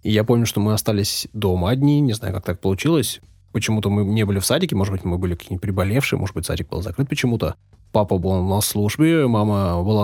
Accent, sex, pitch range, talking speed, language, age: native, male, 95-115 Hz, 220 wpm, Russian, 20-39